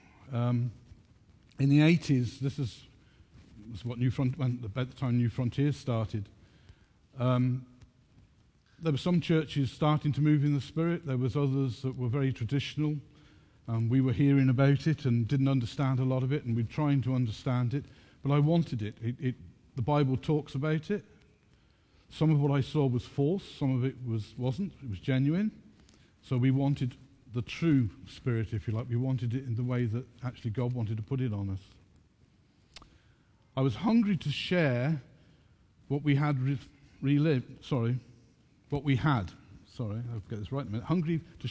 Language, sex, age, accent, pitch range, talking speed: English, male, 50-69, British, 120-145 Hz, 190 wpm